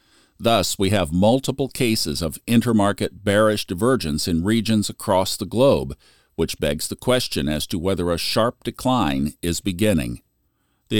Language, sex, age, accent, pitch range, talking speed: English, male, 50-69, American, 90-110 Hz, 145 wpm